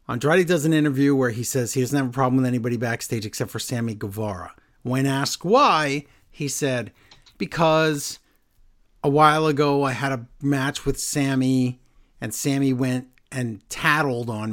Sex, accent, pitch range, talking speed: male, American, 120-155 Hz, 165 wpm